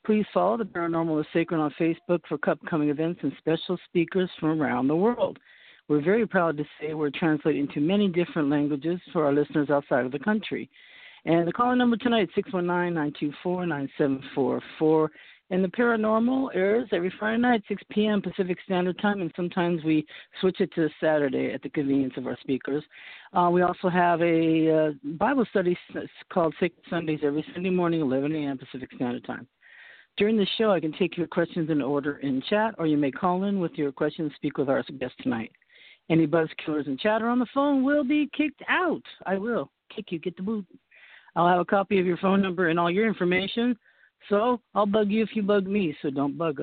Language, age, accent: English, 50-69, American